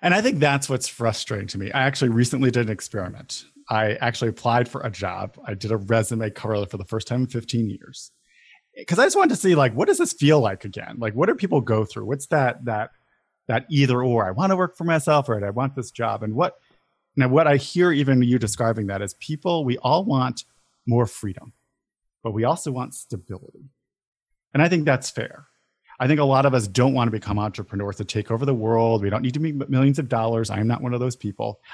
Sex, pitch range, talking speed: male, 110-135 Hz, 240 wpm